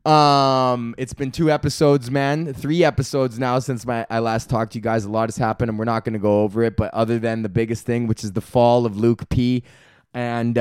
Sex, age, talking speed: male, 20-39, 240 wpm